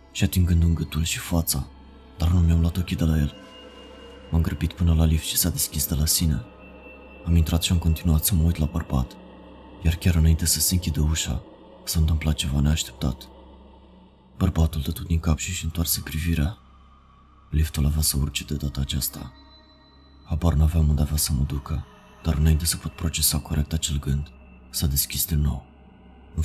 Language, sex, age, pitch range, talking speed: Romanian, male, 30-49, 75-85 Hz, 175 wpm